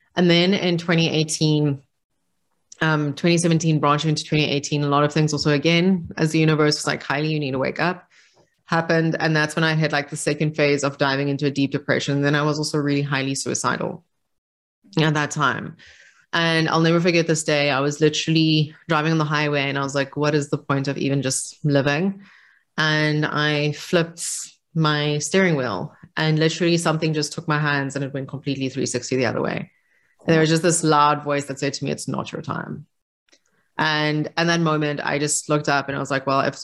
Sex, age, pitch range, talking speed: female, 30-49, 145-160 Hz, 210 wpm